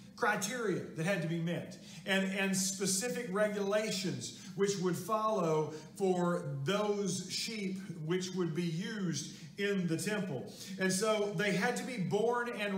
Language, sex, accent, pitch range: English, male, American, 180-215 Hz